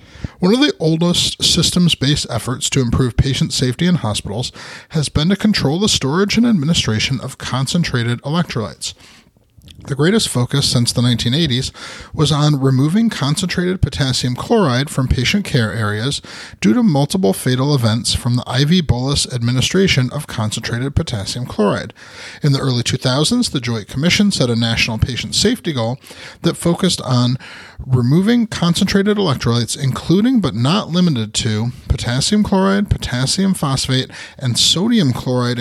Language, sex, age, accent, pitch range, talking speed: English, male, 30-49, American, 120-170 Hz, 140 wpm